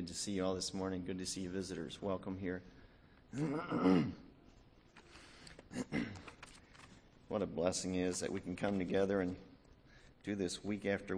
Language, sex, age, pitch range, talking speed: English, male, 50-69, 95-115 Hz, 150 wpm